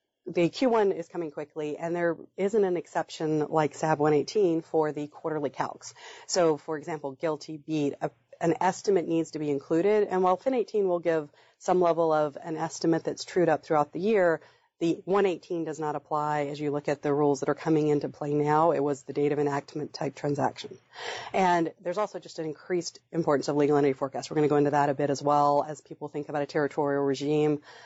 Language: English